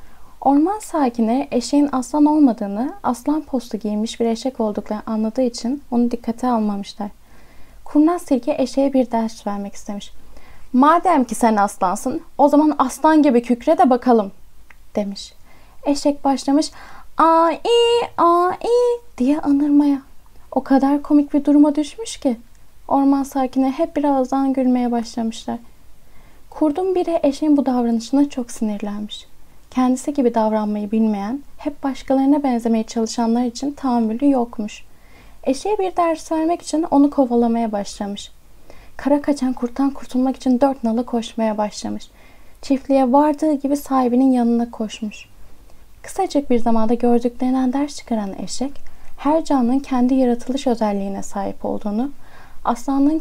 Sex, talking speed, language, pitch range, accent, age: female, 125 wpm, Turkish, 230-290 Hz, native, 10-29